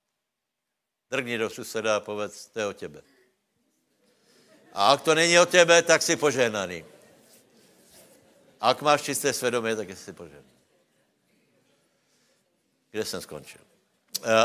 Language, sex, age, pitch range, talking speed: Slovak, male, 60-79, 100-130 Hz, 125 wpm